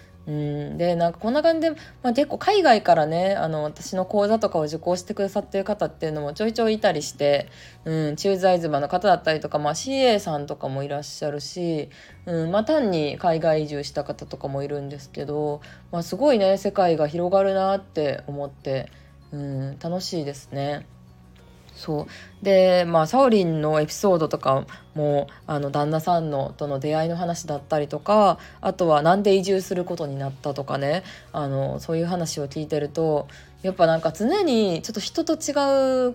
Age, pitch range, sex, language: 20-39, 145-190 Hz, female, Japanese